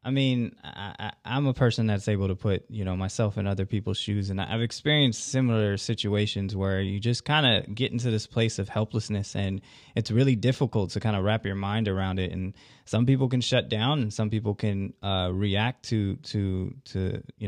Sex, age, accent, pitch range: male, 20-39, American, 100-120 Hz